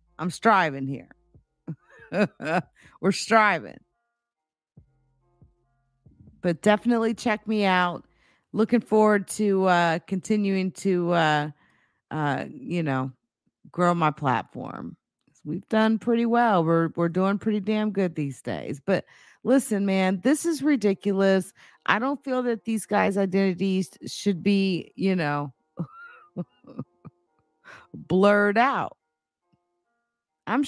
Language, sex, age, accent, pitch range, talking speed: English, female, 50-69, American, 145-195 Hz, 110 wpm